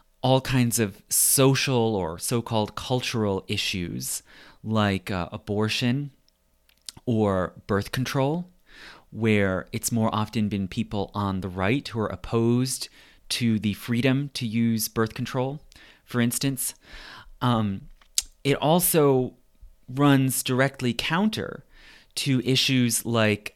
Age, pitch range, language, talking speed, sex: 30-49, 105-130 Hz, English, 110 wpm, male